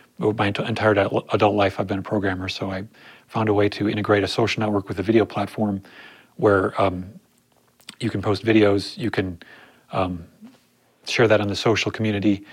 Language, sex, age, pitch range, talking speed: English, male, 30-49, 100-115 Hz, 175 wpm